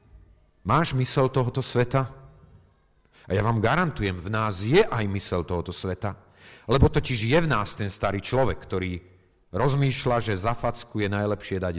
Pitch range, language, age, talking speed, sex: 80-105 Hz, Slovak, 40-59, 160 wpm, male